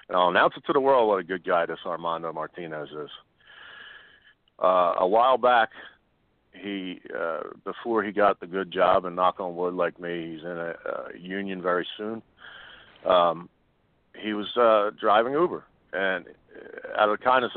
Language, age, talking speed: English, 50-69, 175 wpm